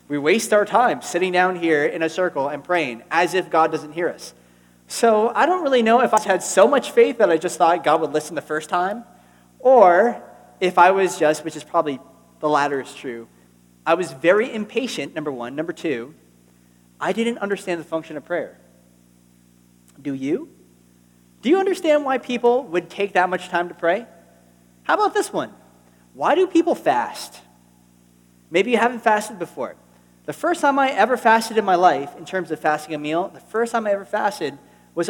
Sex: male